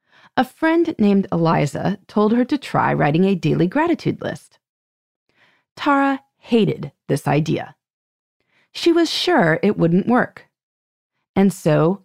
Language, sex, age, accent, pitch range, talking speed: English, female, 30-49, American, 165-245 Hz, 125 wpm